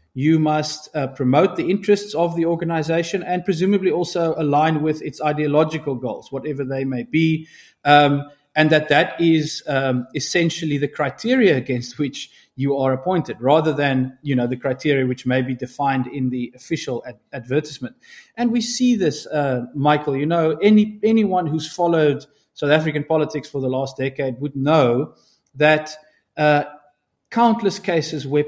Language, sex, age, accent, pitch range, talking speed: English, male, 30-49, South African, 135-165 Hz, 160 wpm